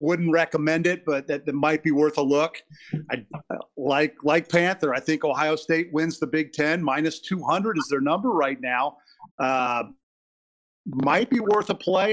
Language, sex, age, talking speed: English, male, 40-59, 180 wpm